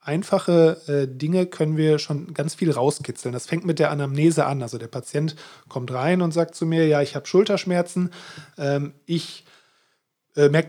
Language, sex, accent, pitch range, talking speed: German, male, German, 140-165 Hz, 180 wpm